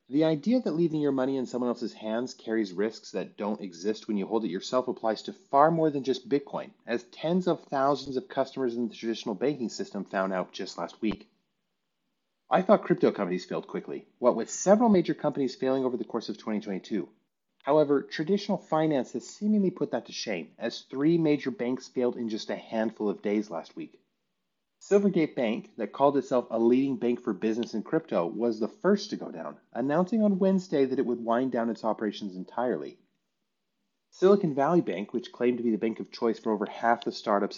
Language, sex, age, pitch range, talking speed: English, male, 30-49, 110-150 Hz, 205 wpm